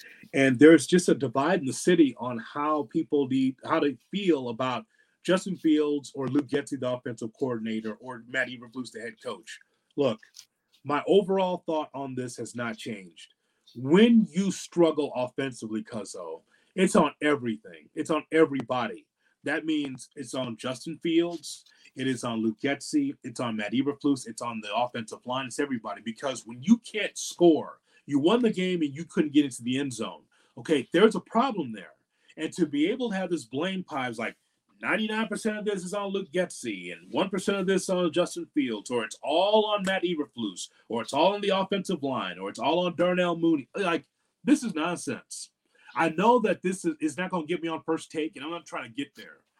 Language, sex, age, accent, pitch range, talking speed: English, male, 30-49, American, 130-185 Hz, 195 wpm